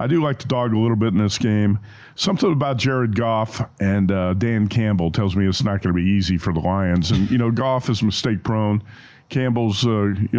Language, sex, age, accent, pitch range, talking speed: English, male, 50-69, American, 105-125 Hz, 225 wpm